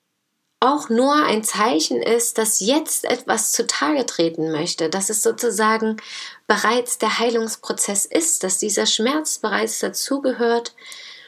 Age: 30-49